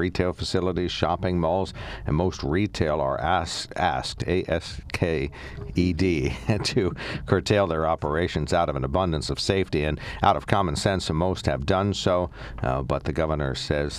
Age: 60-79